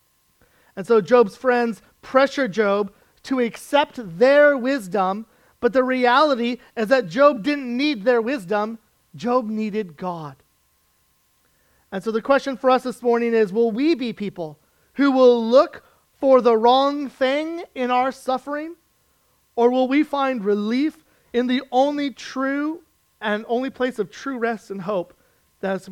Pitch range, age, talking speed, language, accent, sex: 220-270 Hz, 30-49, 155 wpm, English, American, male